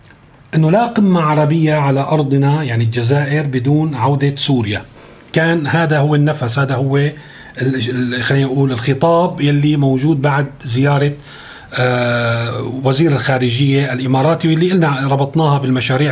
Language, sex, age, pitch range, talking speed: Arabic, male, 40-59, 130-165 Hz, 115 wpm